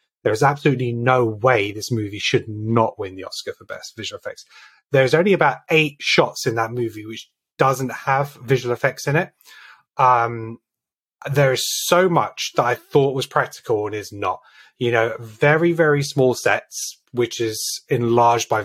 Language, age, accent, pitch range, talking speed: English, 30-49, British, 110-140 Hz, 175 wpm